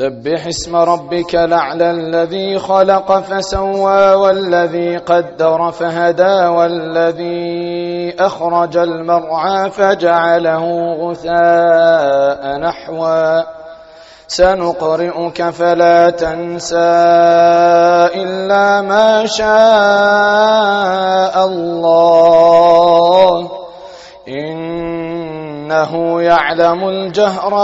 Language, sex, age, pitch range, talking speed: Arabic, male, 30-49, 170-205 Hz, 55 wpm